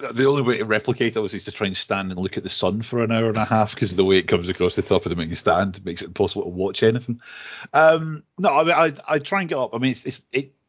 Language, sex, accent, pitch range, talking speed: English, male, British, 85-110 Hz, 315 wpm